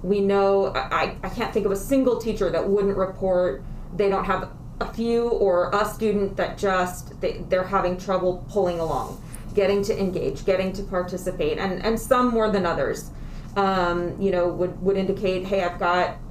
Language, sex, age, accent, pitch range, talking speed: English, female, 30-49, American, 175-205 Hz, 185 wpm